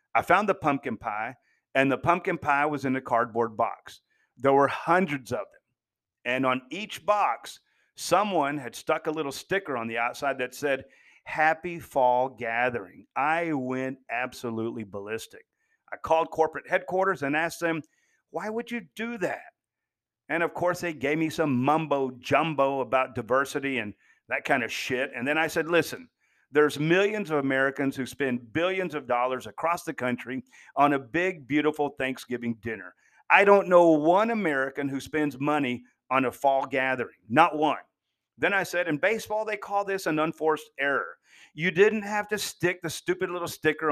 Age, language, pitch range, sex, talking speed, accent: 40-59, English, 130-170 Hz, male, 170 wpm, American